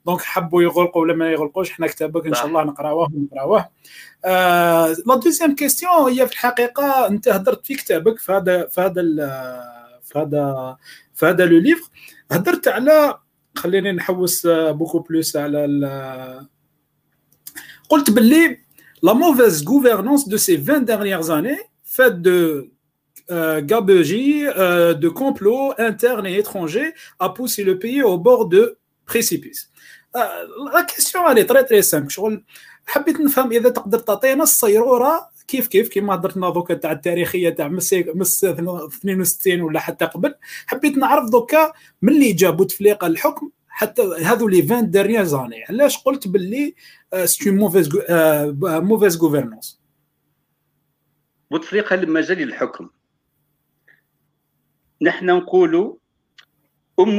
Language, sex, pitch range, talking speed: Arabic, male, 170-275 Hz, 120 wpm